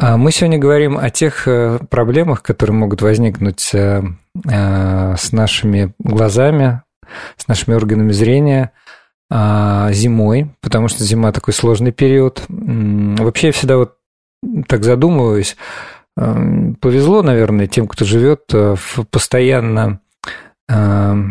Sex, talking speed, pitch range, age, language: male, 100 wpm, 110-135 Hz, 40-59, Russian